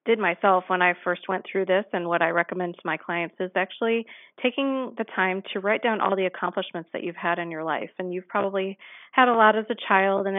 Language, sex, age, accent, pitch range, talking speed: English, female, 40-59, American, 180-215 Hz, 245 wpm